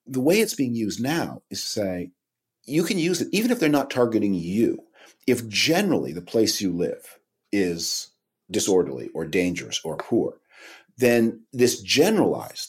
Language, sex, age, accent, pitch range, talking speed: English, male, 50-69, American, 100-140 Hz, 160 wpm